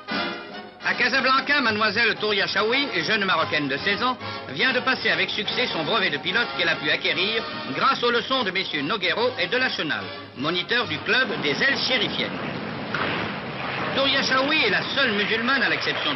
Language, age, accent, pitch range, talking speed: French, 50-69, French, 165-235 Hz, 175 wpm